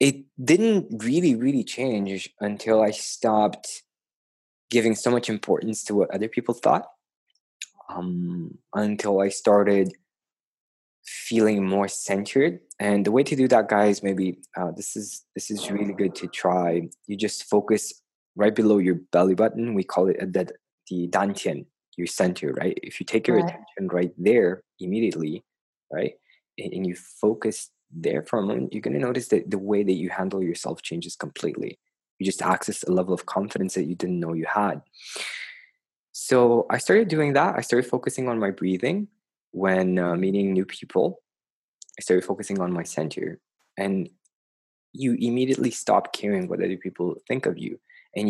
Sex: male